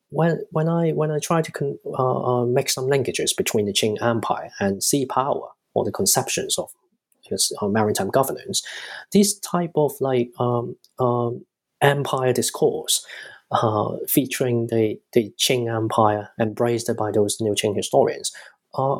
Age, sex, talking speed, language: 20-39, male, 155 wpm, English